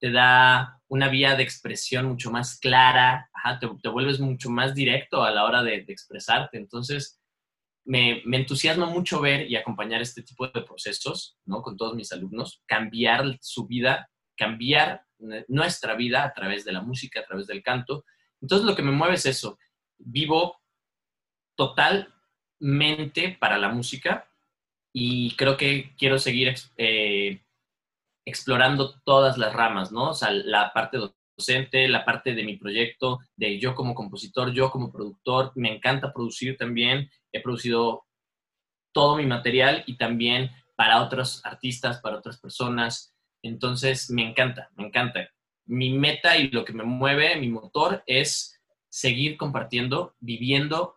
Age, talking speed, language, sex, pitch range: 20-39, 150 wpm, Spanish, male, 120-135 Hz